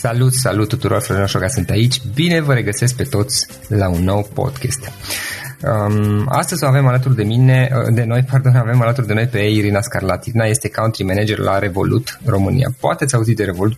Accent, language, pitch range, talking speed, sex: native, Romanian, 105-130 Hz, 190 wpm, male